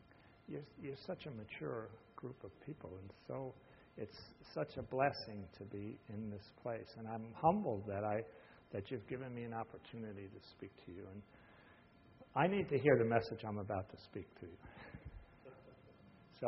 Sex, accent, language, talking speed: male, American, English, 175 wpm